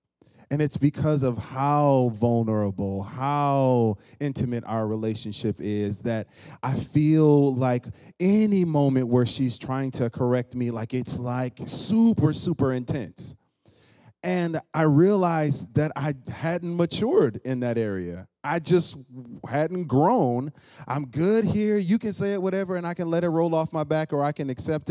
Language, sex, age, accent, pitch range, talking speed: English, male, 30-49, American, 115-150 Hz, 155 wpm